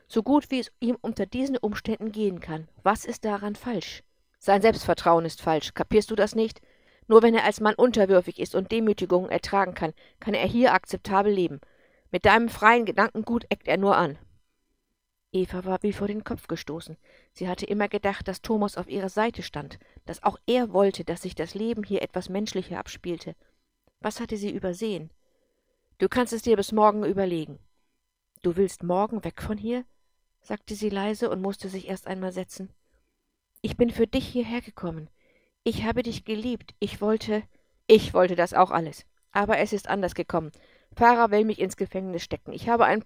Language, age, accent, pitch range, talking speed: English, 50-69, German, 185-220 Hz, 185 wpm